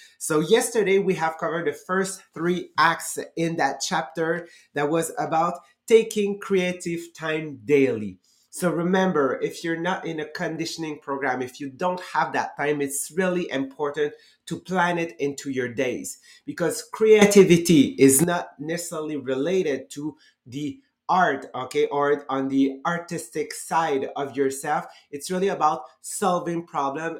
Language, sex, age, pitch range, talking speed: English, male, 30-49, 140-175 Hz, 145 wpm